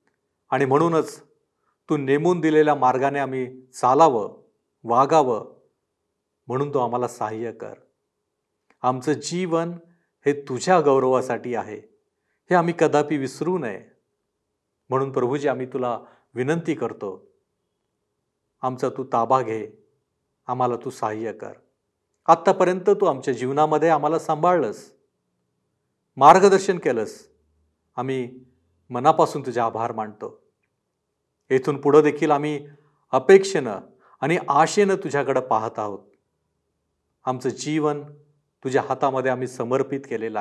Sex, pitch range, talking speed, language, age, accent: male, 125-160 Hz, 100 wpm, Marathi, 40-59, native